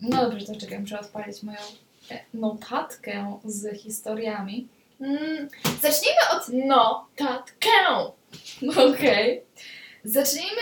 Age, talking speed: 10-29, 85 wpm